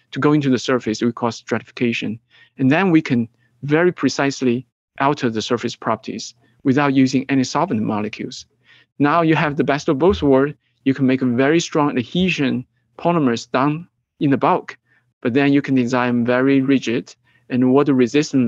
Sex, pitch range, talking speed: male, 125-155 Hz, 175 wpm